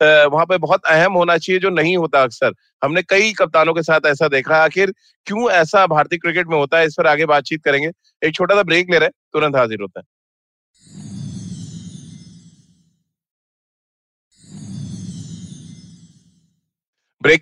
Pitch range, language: 150-180 Hz, Hindi